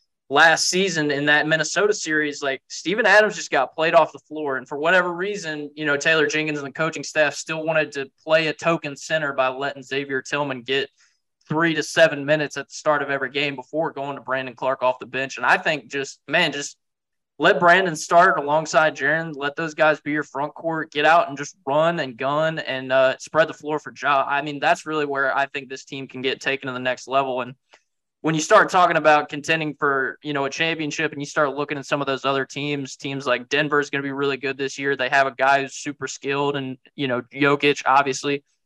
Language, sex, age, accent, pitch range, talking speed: English, male, 20-39, American, 135-155 Hz, 235 wpm